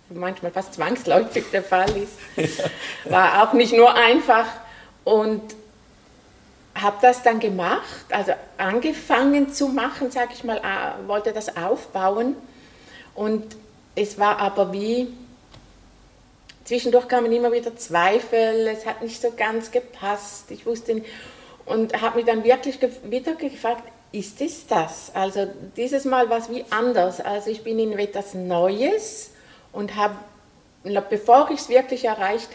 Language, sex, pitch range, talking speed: German, female, 200-240 Hz, 140 wpm